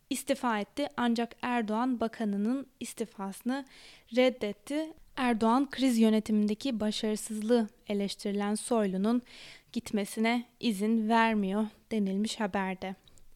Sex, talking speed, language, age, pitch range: female, 80 wpm, Turkish, 20-39, 210-250 Hz